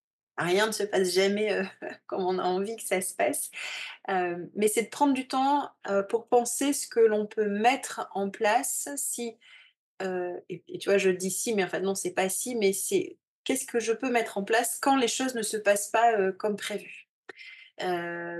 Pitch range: 185-225 Hz